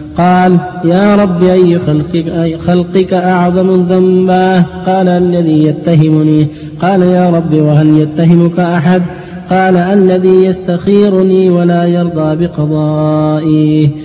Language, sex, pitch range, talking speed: Arabic, male, 155-185 Hz, 100 wpm